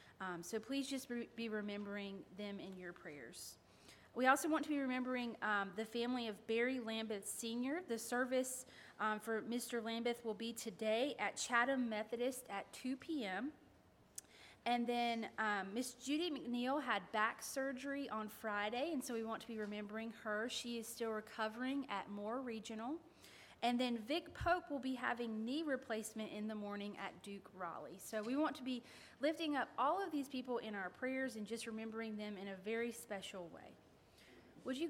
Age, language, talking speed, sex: 30-49, English, 175 wpm, female